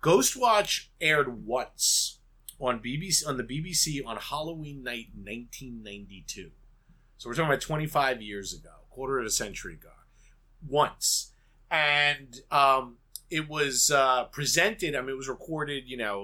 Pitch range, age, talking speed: 105-140 Hz, 30-49, 145 wpm